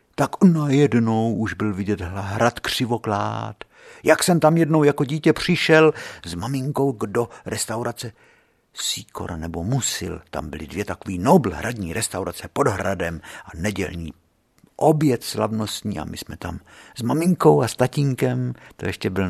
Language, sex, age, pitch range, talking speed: Czech, male, 60-79, 95-135 Hz, 135 wpm